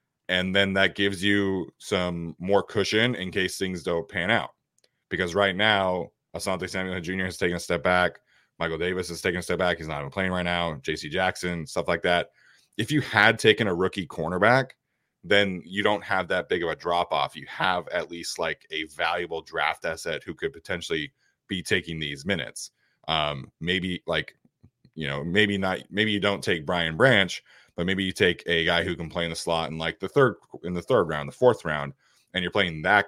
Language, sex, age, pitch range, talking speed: English, male, 30-49, 85-100 Hz, 210 wpm